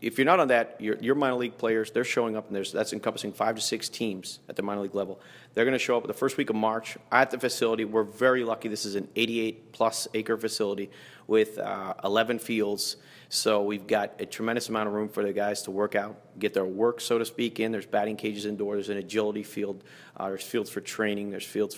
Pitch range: 105-115 Hz